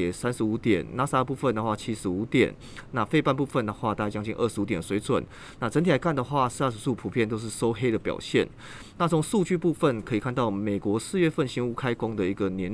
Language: Chinese